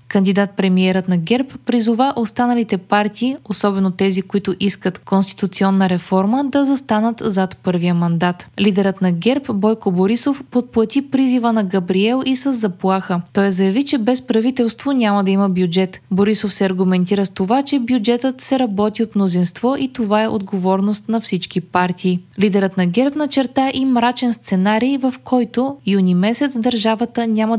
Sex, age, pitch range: female, 20-39, 190-245 Hz